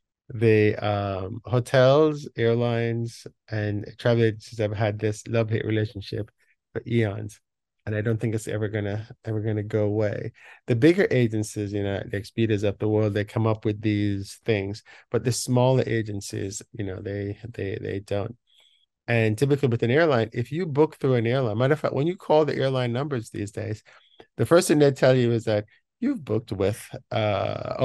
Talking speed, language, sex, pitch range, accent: 185 wpm, English, male, 105-125 Hz, American